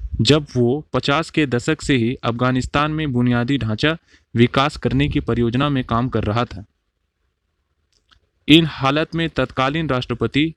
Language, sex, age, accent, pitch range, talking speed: Hindi, male, 30-49, native, 115-145 Hz, 140 wpm